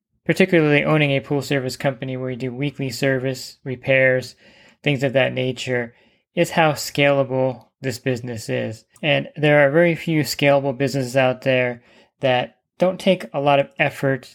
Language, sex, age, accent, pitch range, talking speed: English, male, 20-39, American, 130-150 Hz, 160 wpm